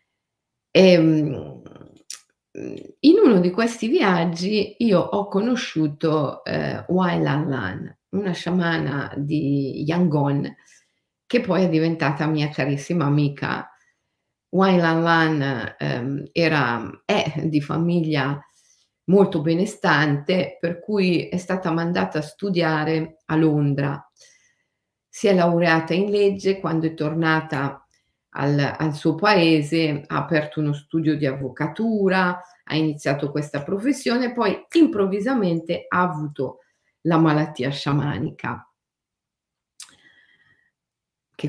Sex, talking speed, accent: female, 105 wpm, native